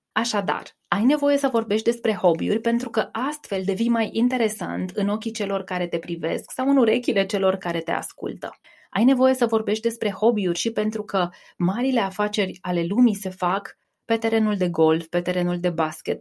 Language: Romanian